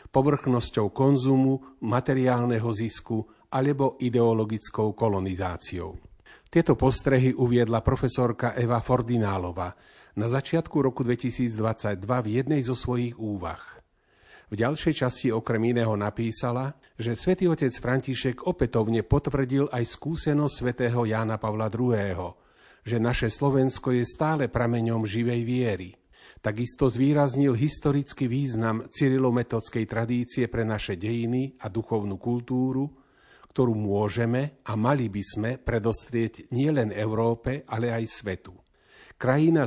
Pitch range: 110-135 Hz